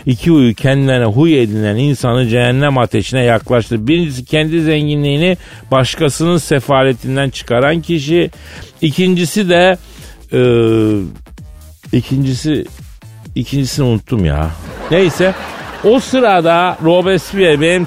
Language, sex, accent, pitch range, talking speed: Turkish, male, native, 125-185 Hz, 95 wpm